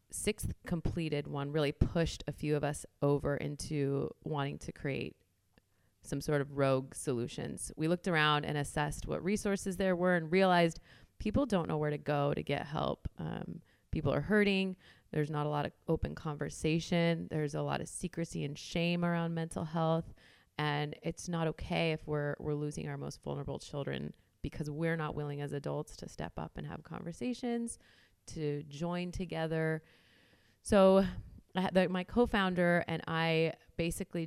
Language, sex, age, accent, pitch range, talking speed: English, female, 30-49, American, 145-170 Hz, 165 wpm